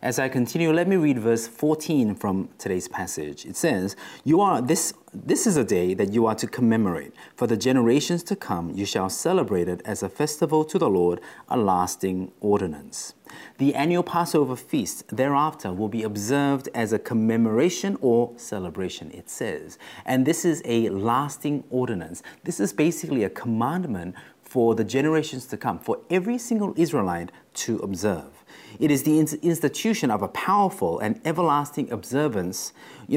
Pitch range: 110-145 Hz